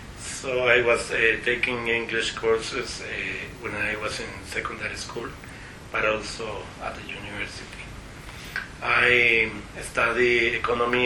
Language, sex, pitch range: Japanese, male, 105-125 Hz